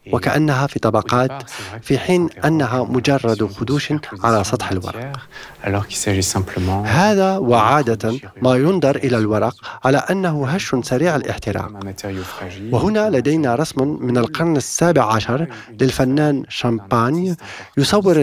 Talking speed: 105 wpm